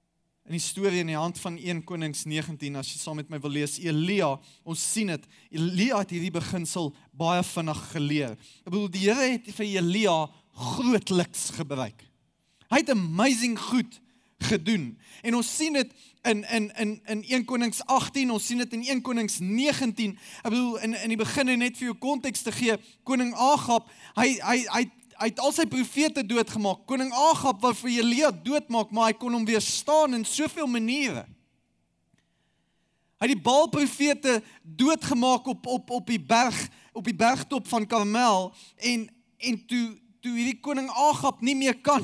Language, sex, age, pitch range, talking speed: English, male, 20-39, 200-260 Hz, 175 wpm